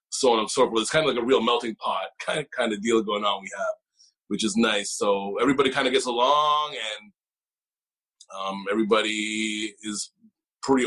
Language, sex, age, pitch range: English, male, 20-39, 105-130 Hz